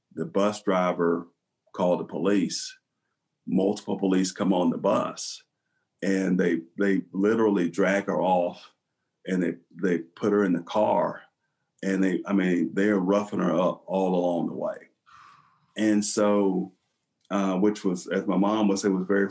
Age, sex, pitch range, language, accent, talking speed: 40-59, male, 90-105 Hz, English, American, 160 wpm